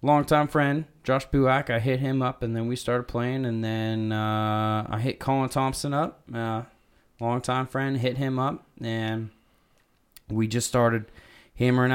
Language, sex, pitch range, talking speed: English, male, 110-130 Hz, 170 wpm